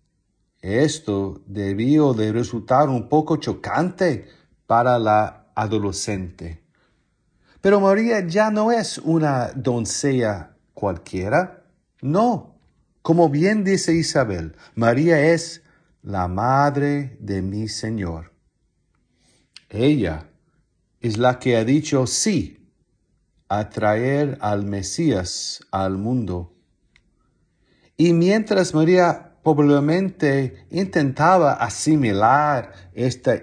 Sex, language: male, English